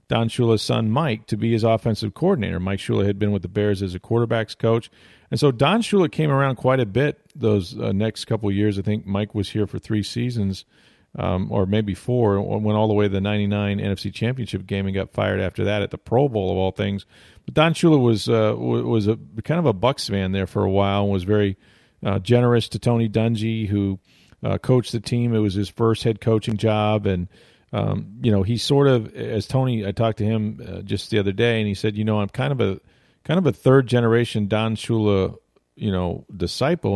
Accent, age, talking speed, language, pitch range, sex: American, 40-59, 230 wpm, English, 100-120 Hz, male